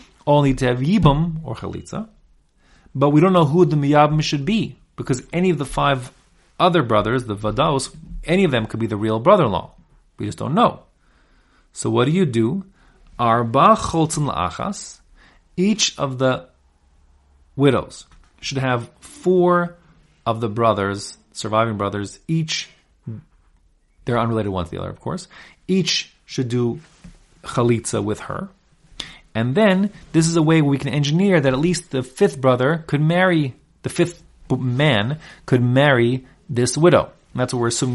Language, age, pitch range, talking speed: English, 30-49, 110-160 Hz, 160 wpm